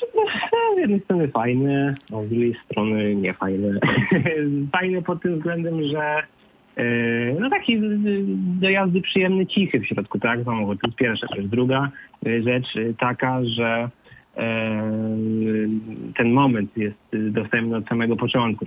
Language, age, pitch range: Polish, 20-39, 115-130 Hz